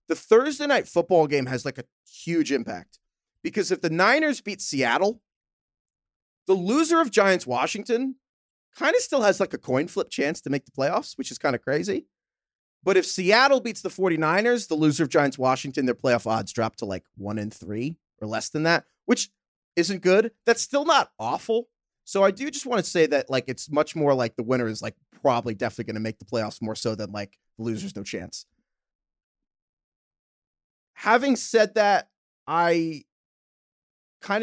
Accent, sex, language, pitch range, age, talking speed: American, male, English, 110-185 Hz, 30-49, 185 wpm